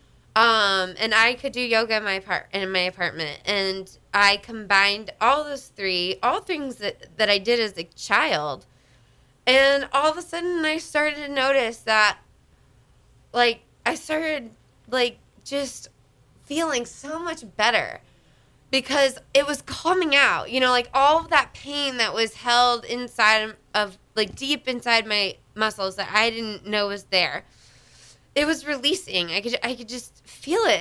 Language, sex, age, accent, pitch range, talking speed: English, female, 20-39, American, 195-255 Hz, 165 wpm